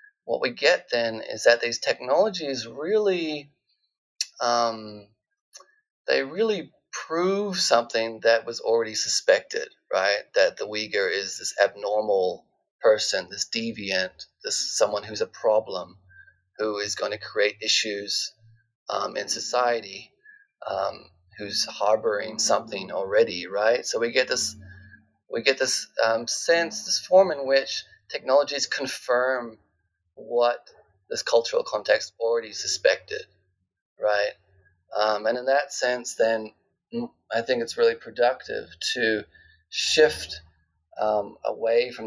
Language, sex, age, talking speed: English, male, 30-49, 120 wpm